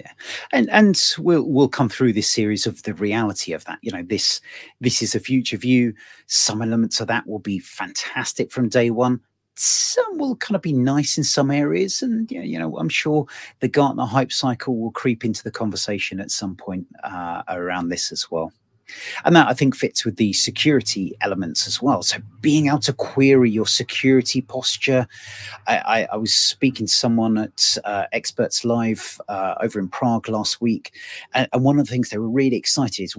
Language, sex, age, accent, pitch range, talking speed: English, male, 30-49, British, 110-135 Hz, 200 wpm